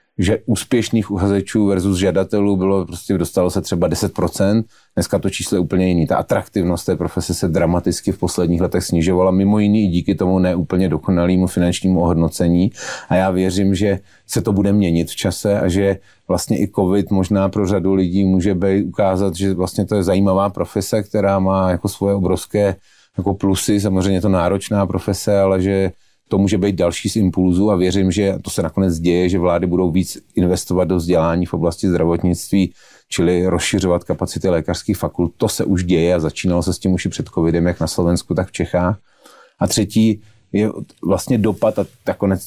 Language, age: Slovak, 30-49